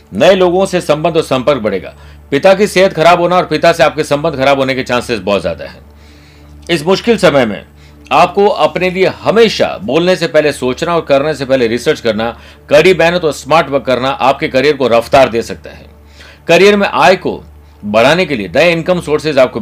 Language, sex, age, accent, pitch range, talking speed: Hindi, male, 50-69, native, 100-165 Hz, 205 wpm